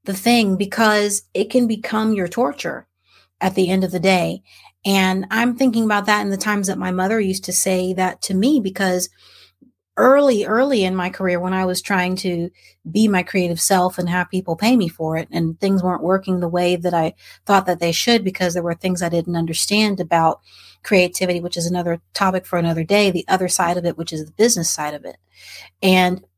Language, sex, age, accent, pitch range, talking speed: English, female, 30-49, American, 175-210 Hz, 215 wpm